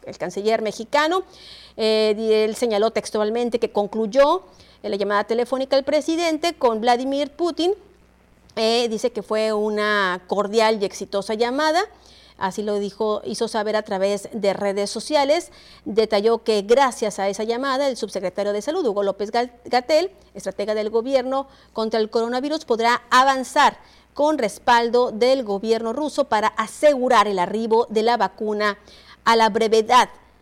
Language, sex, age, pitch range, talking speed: Spanish, female, 40-59, 205-255 Hz, 145 wpm